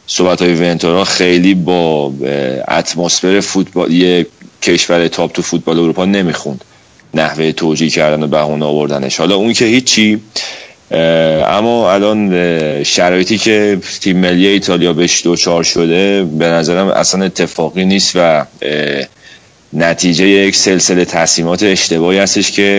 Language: Persian